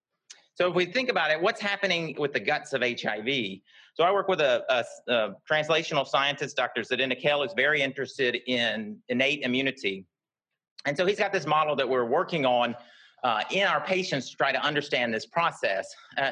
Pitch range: 135-180 Hz